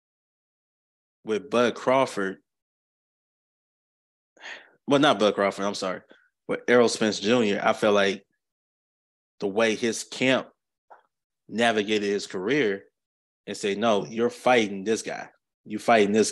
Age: 20-39